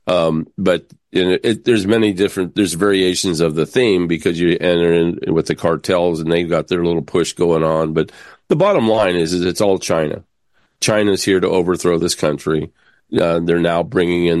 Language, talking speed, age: English, 195 wpm, 40-59